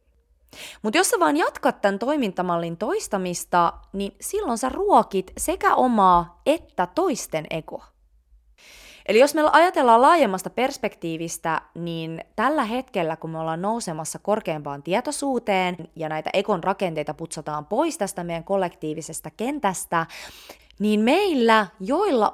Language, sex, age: Finnish, female, 20-39